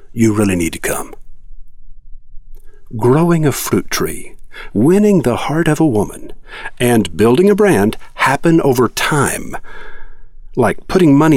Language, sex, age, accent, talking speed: English, male, 50-69, American, 130 wpm